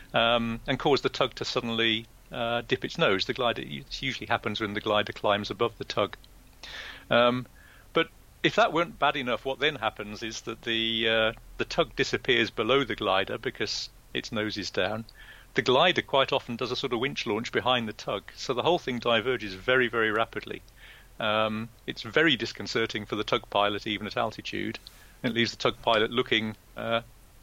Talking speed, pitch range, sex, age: 190 wpm, 110-125 Hz, male, 40-59